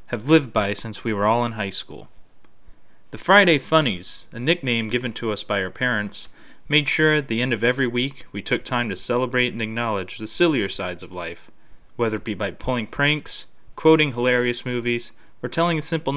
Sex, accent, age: male, American, 30-49